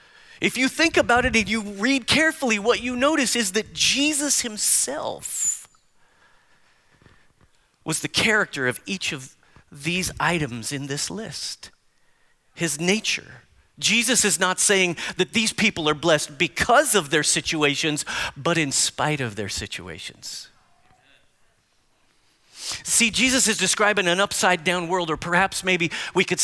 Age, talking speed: 40-59, 140 wpm